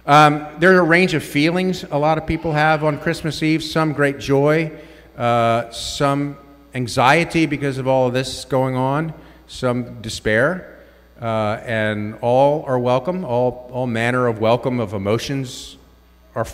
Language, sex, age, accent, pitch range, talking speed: English, male, 50-69, American, 100-145 Hz, 155 wpm